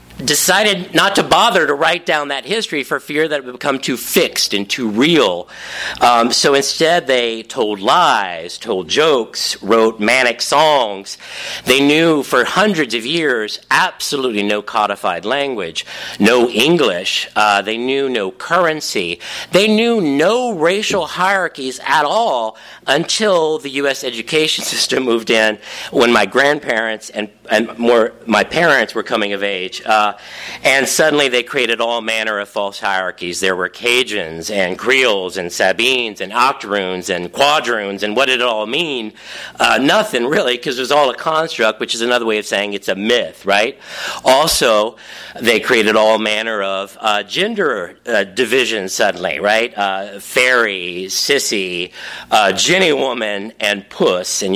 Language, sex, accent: English, male, American